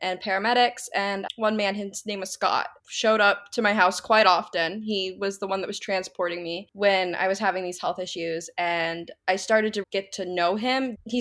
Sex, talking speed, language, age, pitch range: female, 215 wpm, English, 10-29, 185-220 Hz